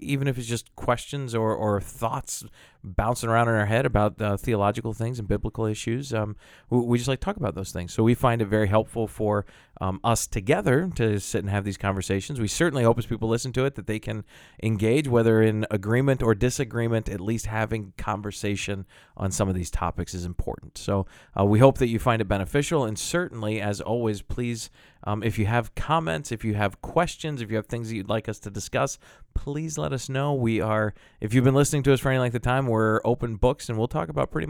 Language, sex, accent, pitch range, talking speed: English, male, American, 105-120 Hz, 230 wpm